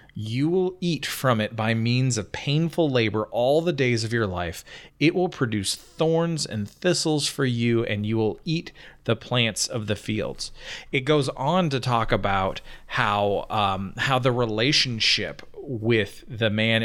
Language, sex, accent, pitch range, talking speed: English, male, American, 105-125 Hz, 165 wpm